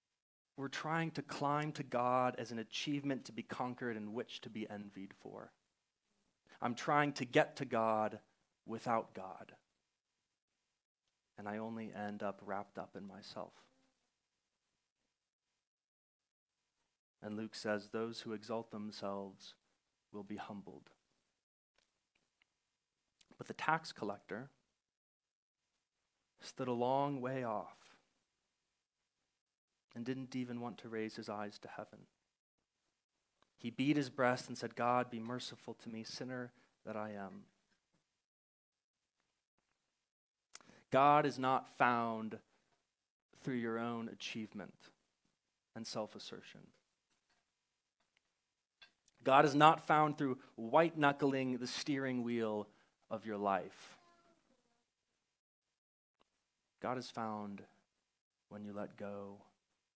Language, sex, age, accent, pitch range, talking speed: English, male, 30-49, American, 105-130 Hz, 110 wpm